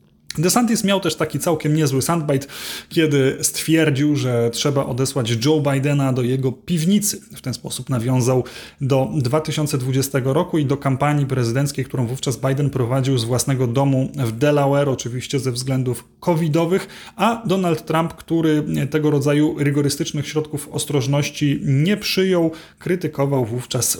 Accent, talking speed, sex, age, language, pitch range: native, 135 wpm, male, 30-49, Polish, 130-160 Hz